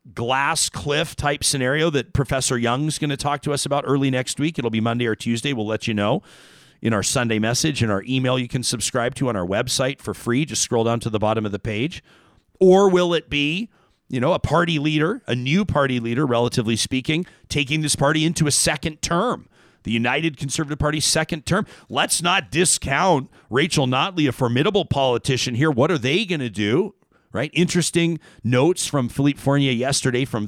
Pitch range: 120-160 Hz